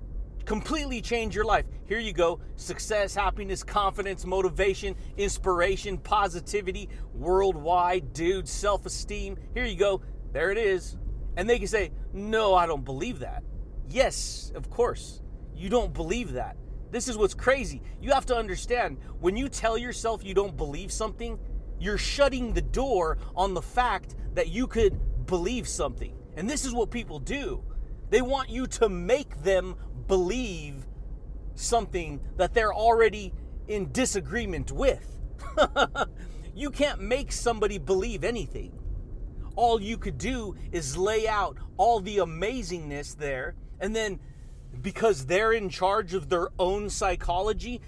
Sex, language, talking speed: male, English, 140 wpm